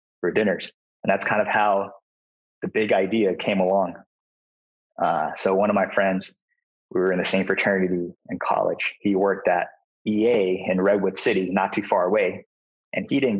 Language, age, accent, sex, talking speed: English, 20-39, American, male, 175 wpm